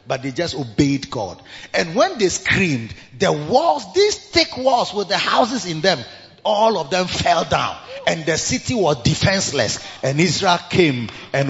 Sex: male